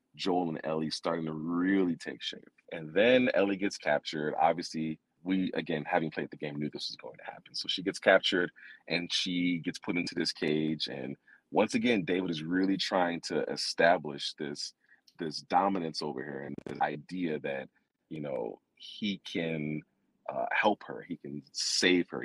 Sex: male